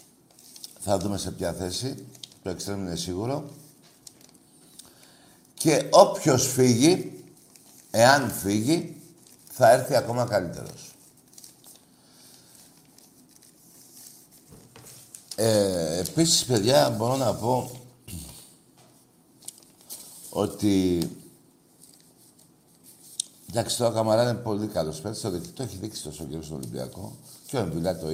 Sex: male